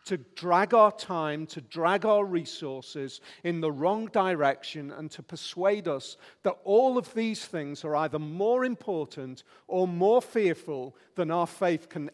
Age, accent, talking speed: 50-69, British, 160 wpm